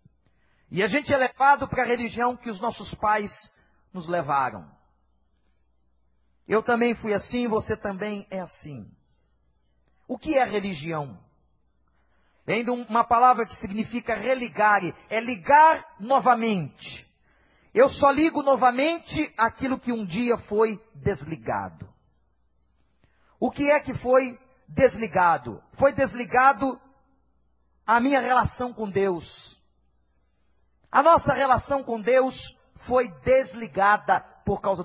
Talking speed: 115 wpm